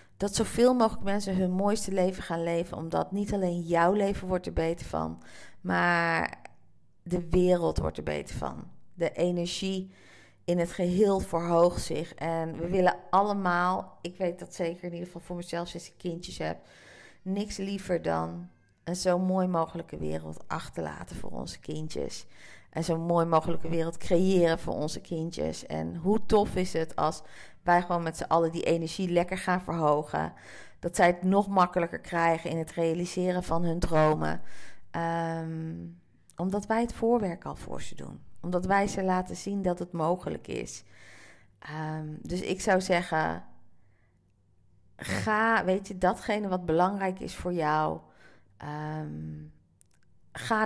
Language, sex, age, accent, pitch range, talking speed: Dutch, female, 40-59, Dutch, 150-185 Hz, 155 wpm